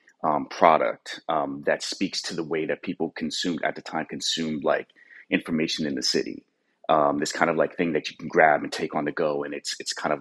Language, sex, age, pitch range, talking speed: English, male, 30-49, 75-95 Hz, 235 wpm